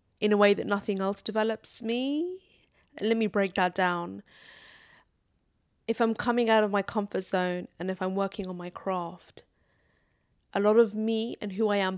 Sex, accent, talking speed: female, British, 180 wpm